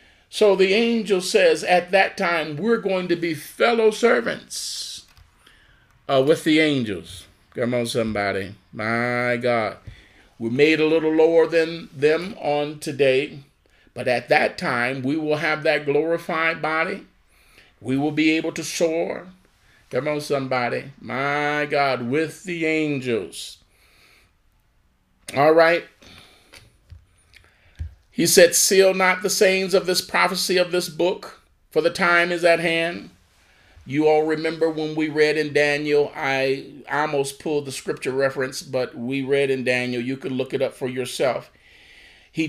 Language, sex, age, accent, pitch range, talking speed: English, male, 40-59, American, 115-160 Hz, 145 wpm